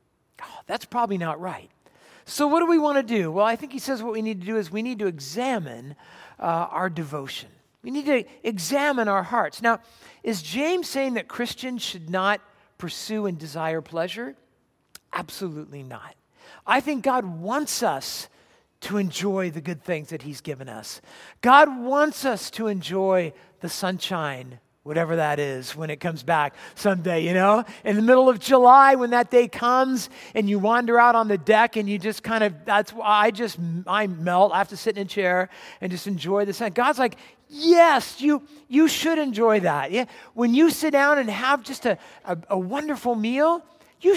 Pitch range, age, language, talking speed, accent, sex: 185-280 Hz, 50-69, English, 190 wpm, American, male